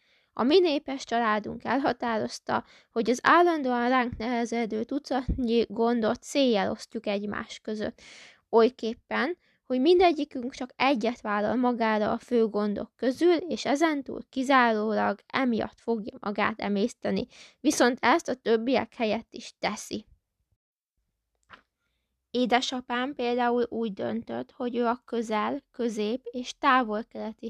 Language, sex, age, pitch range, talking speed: Hungarian, female, 20-39, 220-250 Hz, 115 wpm